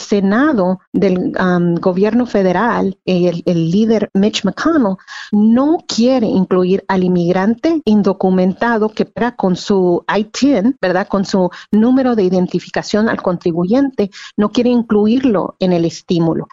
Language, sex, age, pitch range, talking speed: Spanish, female, 40-59, 185-235 Hz, 125 wpm